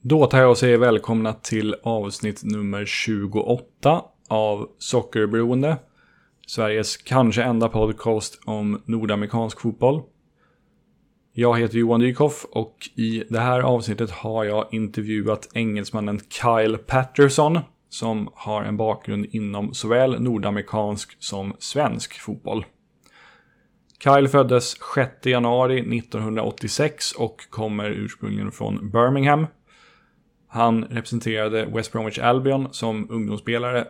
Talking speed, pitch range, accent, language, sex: 110 wpm, 105-125 Hz, native, Swedish, male